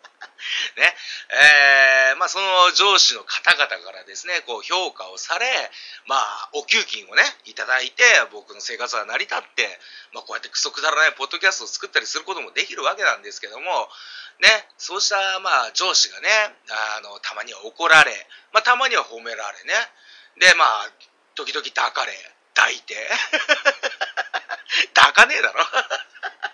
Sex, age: male, 40-59